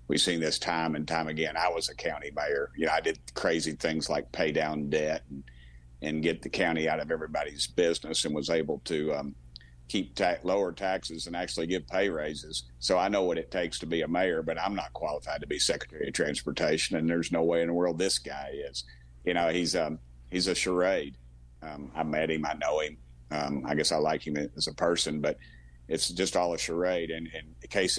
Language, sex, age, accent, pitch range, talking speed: English, male, 50-69, American, 70-85 Hz, 230 wpm